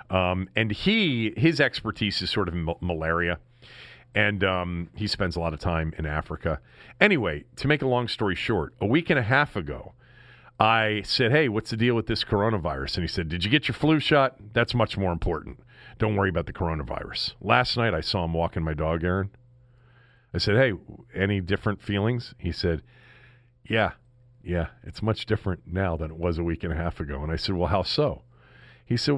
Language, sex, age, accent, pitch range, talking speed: English, male, 40-59, American, 85-120 Hz, 205 wpm